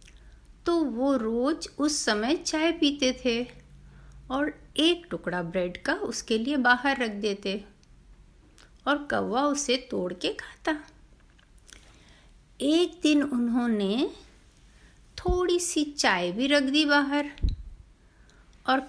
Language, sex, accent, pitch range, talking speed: Hindi, female, native, 210-300 Hz, 110 wpm